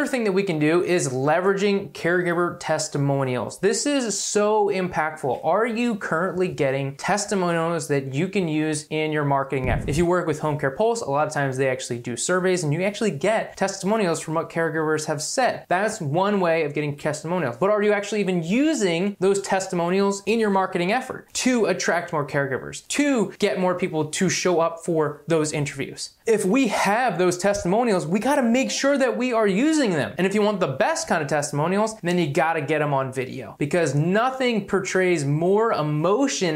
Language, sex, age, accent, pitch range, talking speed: English, male, 20-39, American, 155-210 Hz, 195 wpm